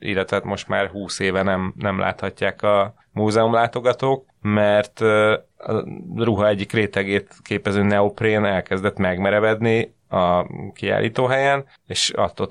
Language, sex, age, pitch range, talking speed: Hungarian, male, 30-49, 95-105 Hz, 110 wpm